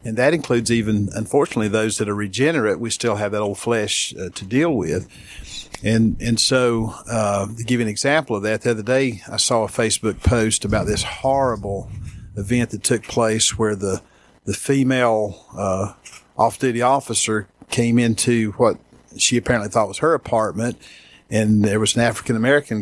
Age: 50-69